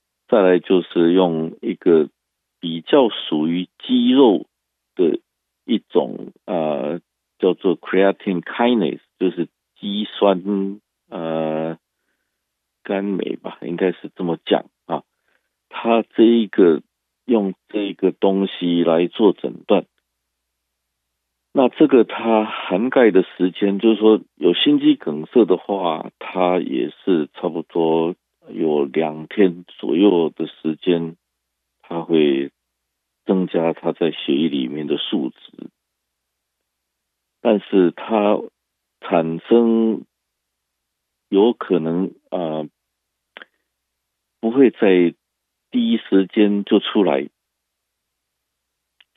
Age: 50-69